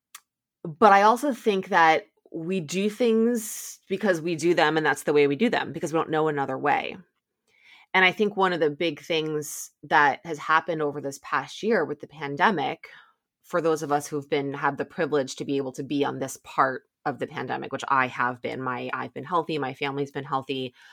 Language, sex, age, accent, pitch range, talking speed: English, female, 20-39, American, 140-175 Hz, 215 wpm